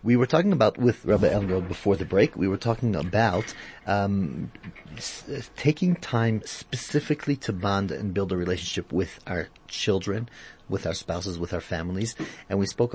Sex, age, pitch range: male, 30-49, 90-115 Hz